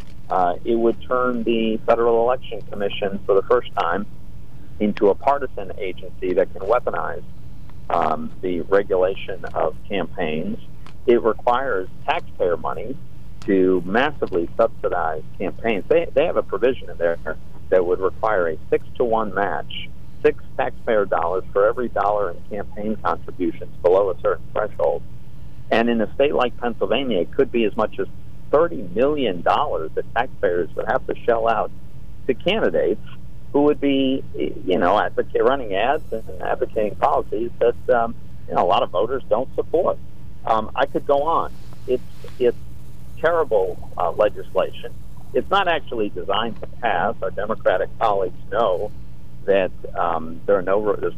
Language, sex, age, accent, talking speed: English, male, 50-69, American, 150 wpm